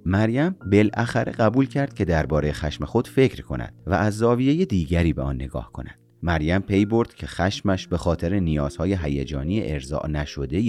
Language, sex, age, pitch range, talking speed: Persian, male, 30-49, 75-105 Hz, 165 wpm